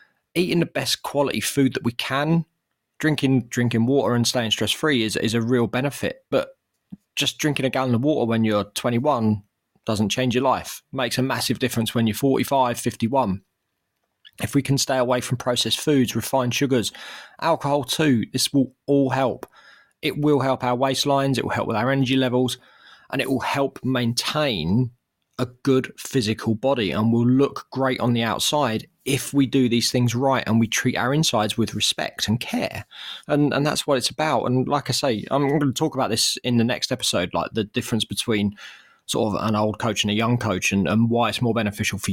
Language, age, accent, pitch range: English, 20-39, British, 115-140 Hz